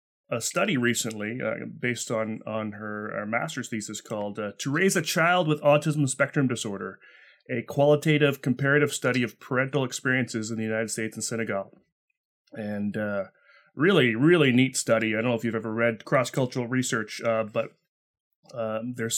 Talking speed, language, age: 165 wpm, English, 30-49